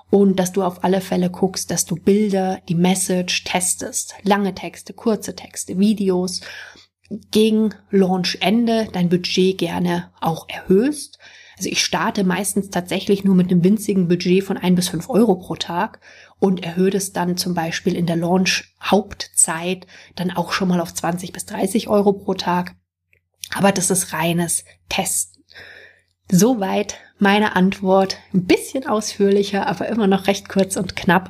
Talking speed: 155 wpm